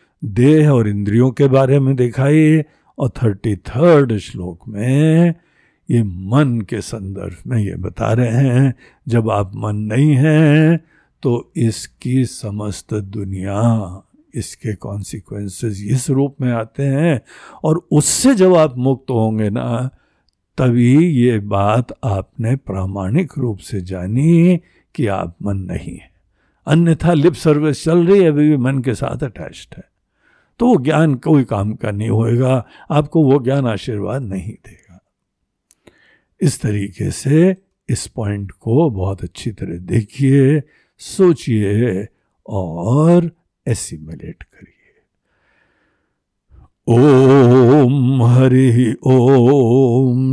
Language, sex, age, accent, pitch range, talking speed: Hindi, male, 60-79, native, 105-140 Hz, 120 wpm